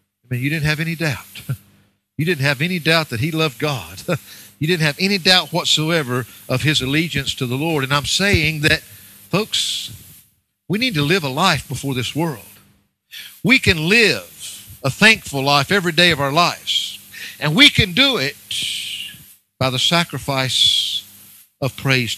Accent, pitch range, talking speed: American, 120-195 Hz, 170 wpm